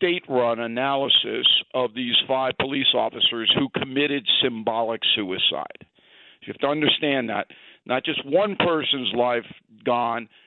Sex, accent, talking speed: male, American, 125 wpm